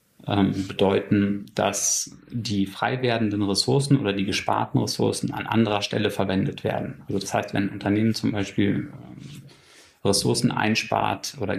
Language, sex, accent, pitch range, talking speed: German, male, German, 100-115 Hz, 135 wpm